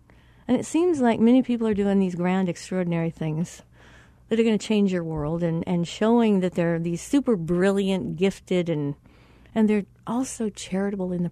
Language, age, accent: English, 50-69, American